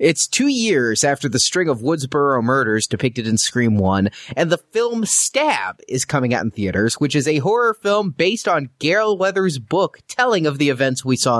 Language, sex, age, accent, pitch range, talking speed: English, male, 30-49, American, 130-195 Hz, 200 wpm